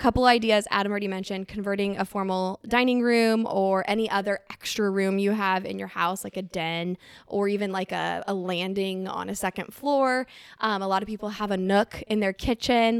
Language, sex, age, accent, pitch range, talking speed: English, female, 10-29, American, 195-235 Hz, 205 wpm